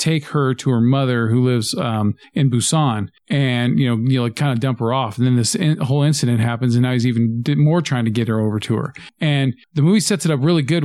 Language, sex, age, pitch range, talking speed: English, male, 40-59, 120-155 Hz, 270 wpm